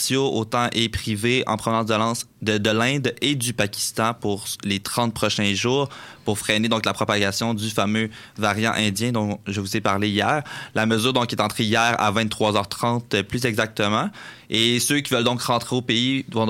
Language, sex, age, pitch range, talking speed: French, male, 20-39, 105-120 Hz, 180 wpm